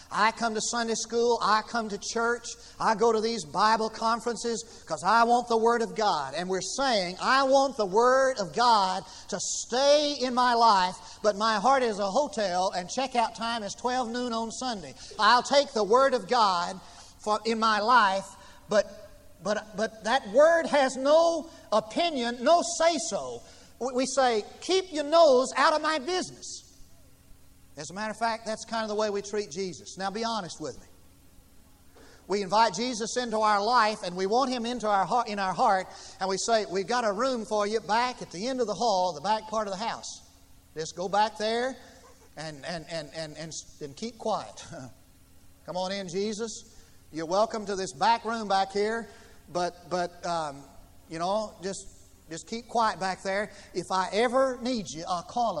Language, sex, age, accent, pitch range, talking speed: English, male, 40-59, American, 185-240 Hz, 190 wpm